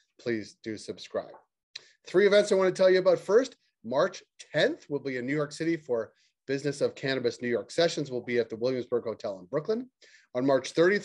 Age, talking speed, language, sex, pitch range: 30-49, 200 wpm, English, male, 120-195 Hz